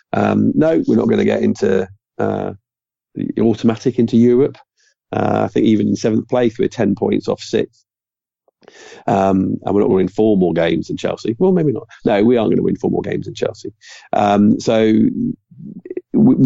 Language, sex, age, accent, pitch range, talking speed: English, male, 40-59, British, 105-120 Hz, 195 wpm